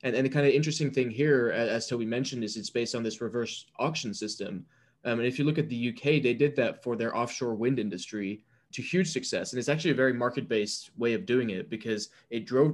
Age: 20-39